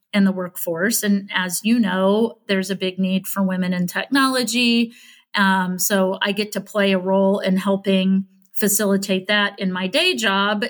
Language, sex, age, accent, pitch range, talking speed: English, female, 40-59, American, 185-205 Hz, 175 wpm